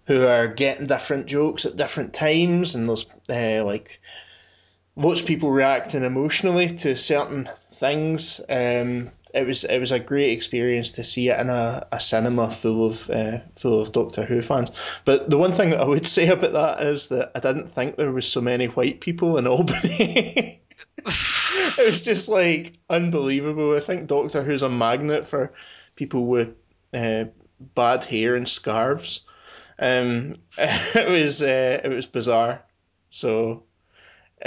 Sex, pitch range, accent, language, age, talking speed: male, 115-150 Hz, British, English, 20-39, 165 wpm